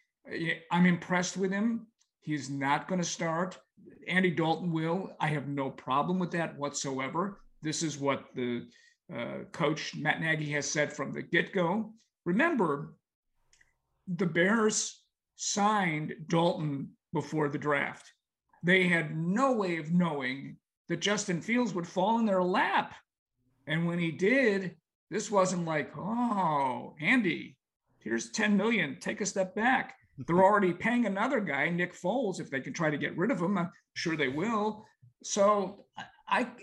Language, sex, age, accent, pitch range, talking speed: English, male, 50-69, American, 150-205 Hz, 150 wpm